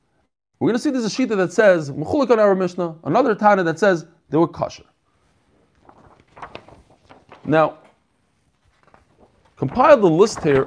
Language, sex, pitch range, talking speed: English, male, 155-220 Hz, 120 wpm